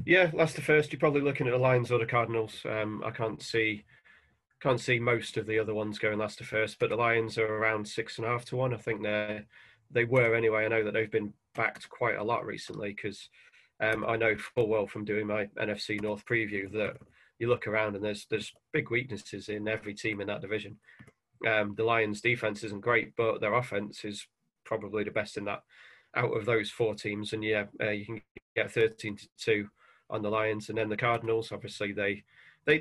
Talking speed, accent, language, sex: 220 wpm, British, English, male